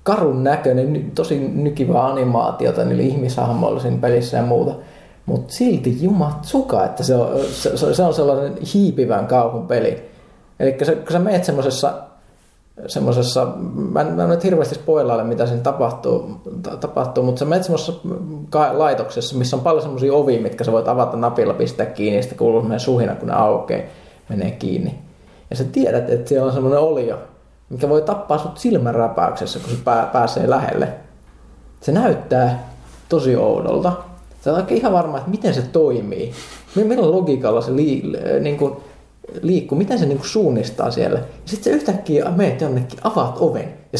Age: 20-39